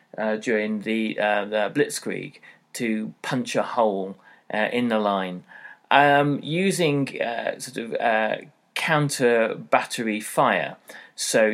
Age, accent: 30-49, British